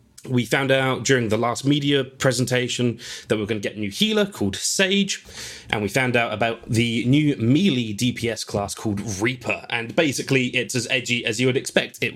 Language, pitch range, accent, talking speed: English, 105-135 Hz, British, 195 wpm